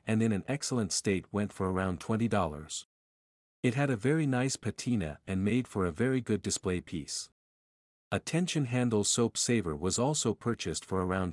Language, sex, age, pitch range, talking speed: English, male, 50-69, 90-125 Hz, 175 wpm